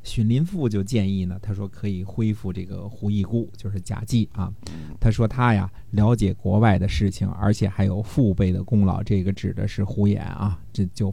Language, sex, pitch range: Chinese, male, 95-115 Hz